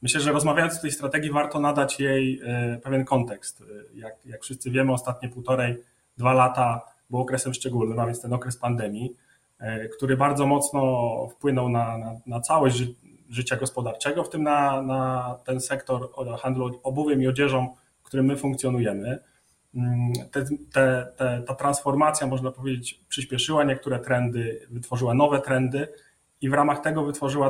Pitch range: 120-140 Hz